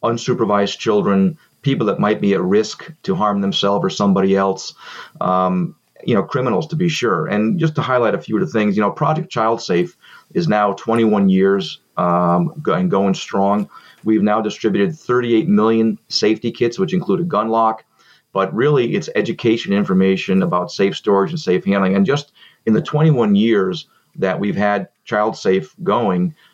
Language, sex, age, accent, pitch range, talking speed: English, male, 30-49, American, 95-150 Hz, 175 wpm